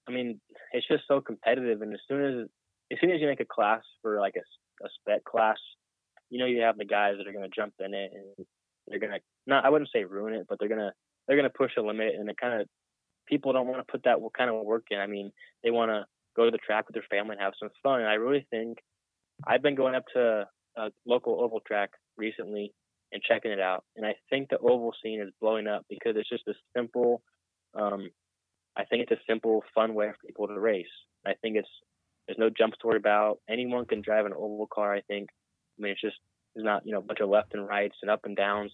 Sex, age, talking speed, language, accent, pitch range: male, 20-39, 255 wpm, English, American, 100-115 Hz